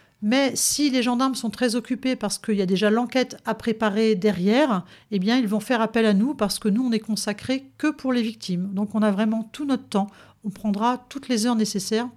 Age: 50-69